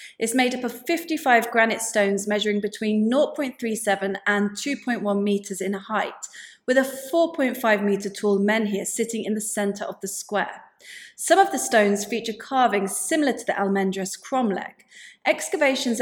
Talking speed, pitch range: 150 wpm, 205-265 Hz